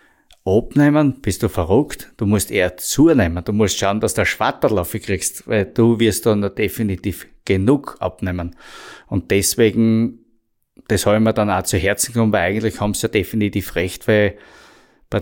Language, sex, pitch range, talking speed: German, male, 95-115 Hz, 165 wpm